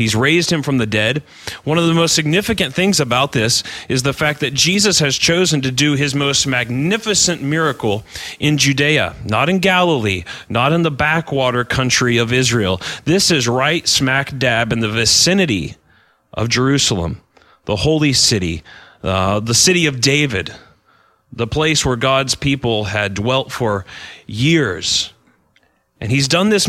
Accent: American